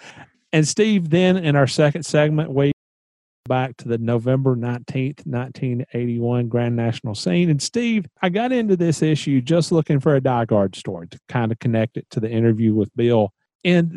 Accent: American